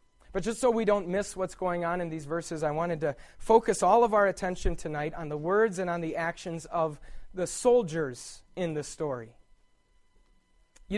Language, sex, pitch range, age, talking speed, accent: English, male, 150-195 Hz, 30-49, 190 wpm, American